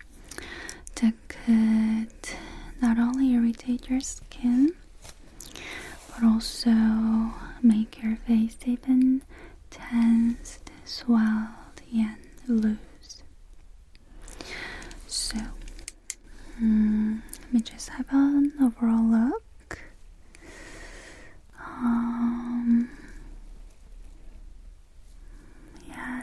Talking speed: 65 wpm